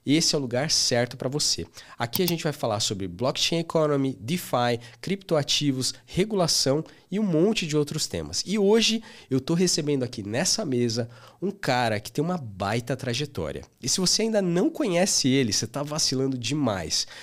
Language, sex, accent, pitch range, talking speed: Portuguese, male, Brazilian, 115-160 Hz, 175 wpm